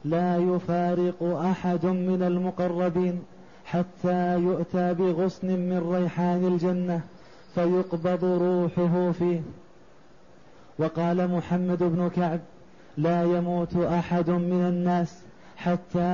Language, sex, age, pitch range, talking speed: Arabic, male, 30-49, 175-185 Hz, 90 wpm